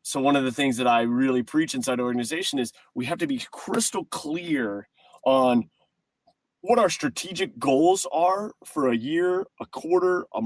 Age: 30-49